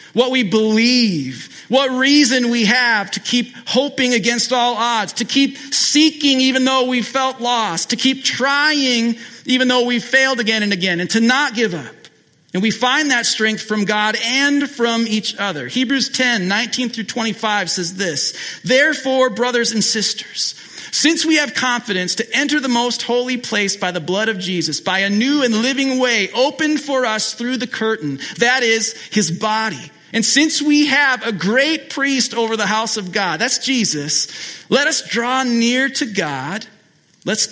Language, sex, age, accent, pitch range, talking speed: English, male, 40-59, American, 210-260 Hz, 175 wpm